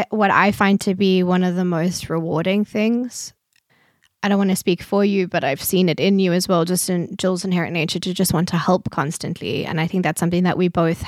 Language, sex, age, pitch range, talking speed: English, female, 20-39, 180-220 Hz, 245 wpm